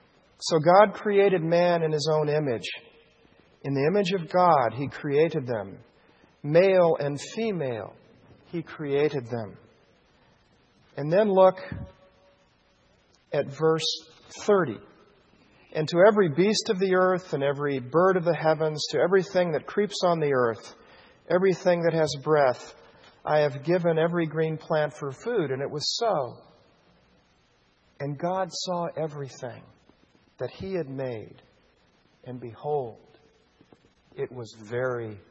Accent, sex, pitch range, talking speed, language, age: American, male, 140-180 Hz, 130 wpm, English, 50-69